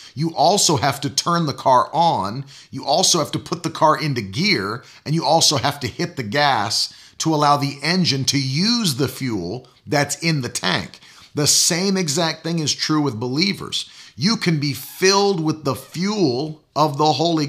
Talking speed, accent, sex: 190 wpm, American, male